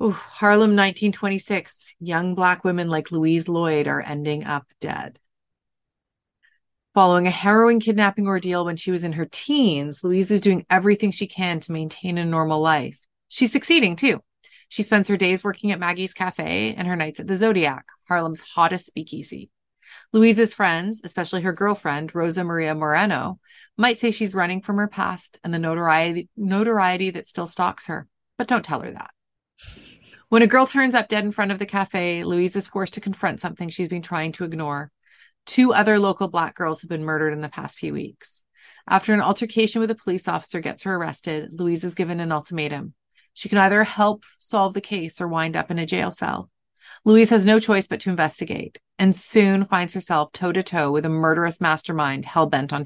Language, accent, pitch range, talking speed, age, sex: English, American, 160-205 Hz, 185 wpm, 30-49, female